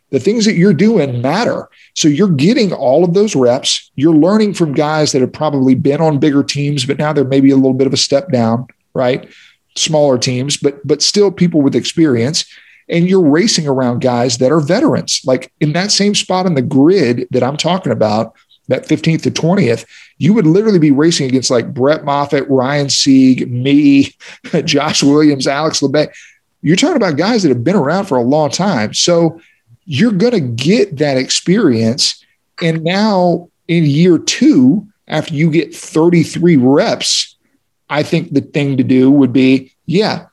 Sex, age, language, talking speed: male, 40-59, English, 180 wpm